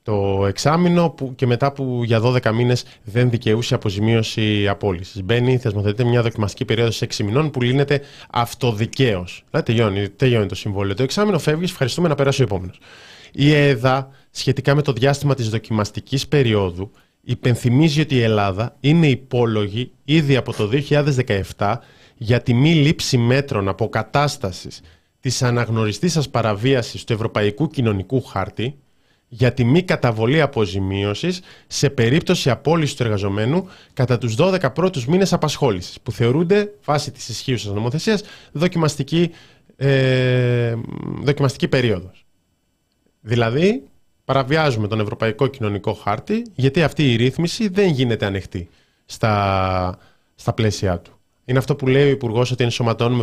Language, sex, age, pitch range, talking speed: Greek, male, 20-39, 110-140 Hz, 135 wpm